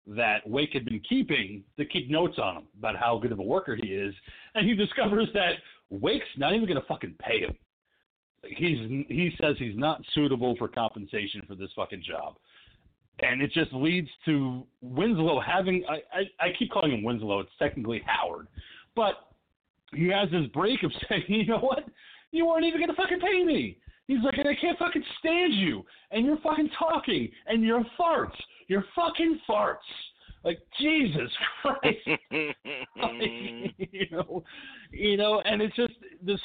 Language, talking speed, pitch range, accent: English, 175 wpm, 125-215 Hz, American